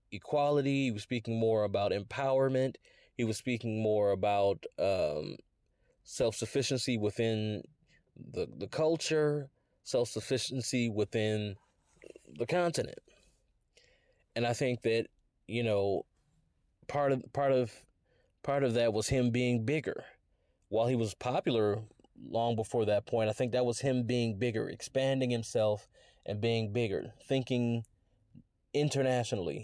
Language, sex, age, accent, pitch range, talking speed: English, male, 20-39, American, 110-130 Hz, 125 wpm